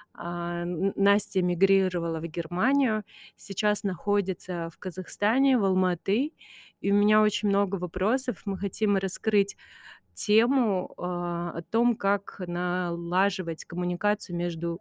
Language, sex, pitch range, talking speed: Russian, female, 180-205 Hz, 115 wpm